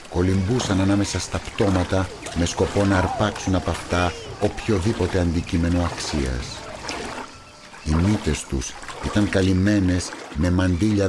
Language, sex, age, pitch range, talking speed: Greek, male, 60-79, 80-100 Hz, 110 wpm